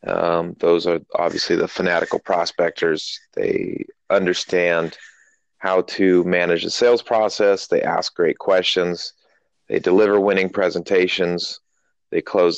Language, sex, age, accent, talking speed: English, male, 30-49, American, 120 wpm